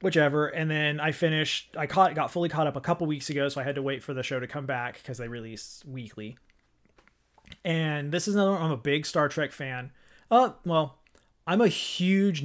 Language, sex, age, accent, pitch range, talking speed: English, male, 30-49, American, 130-155 Hz, 225 wpm